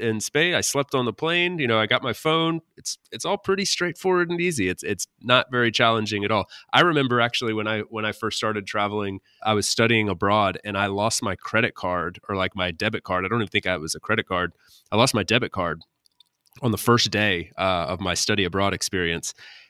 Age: 30-49